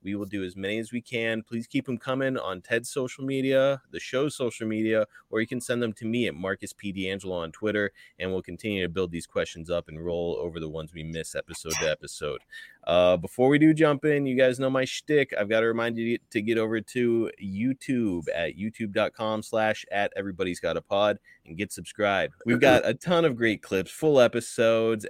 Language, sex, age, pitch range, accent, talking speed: English, male, 30-49, 100-135 Hz, American, 220 wpm